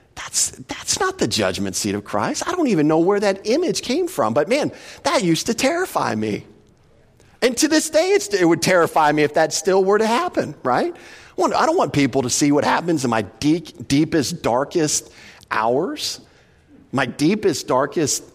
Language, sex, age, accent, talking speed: English, male, 40-59, American, 190 wpm